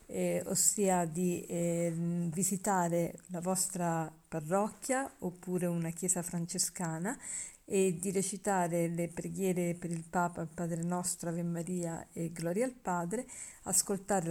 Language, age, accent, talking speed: Italian, 50-69, native, 125 wpm